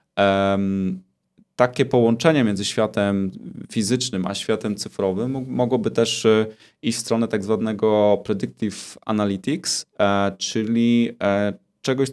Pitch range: 105-125 Hz